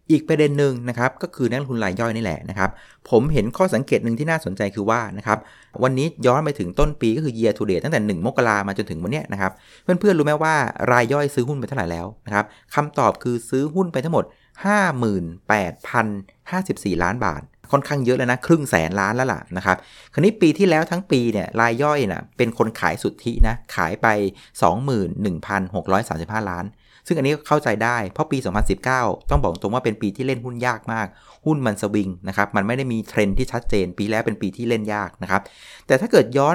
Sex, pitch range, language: male, 100-140 Hz, Thai